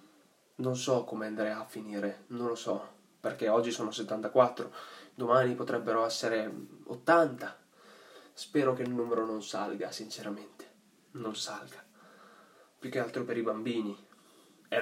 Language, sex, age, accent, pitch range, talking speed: Italian, male, 20-39, native, 105-125 Hz, 135 wpm